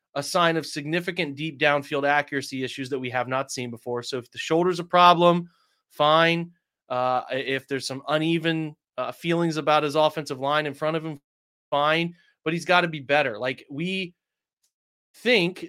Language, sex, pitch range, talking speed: English, male, 140-165 Hz, 175 wpm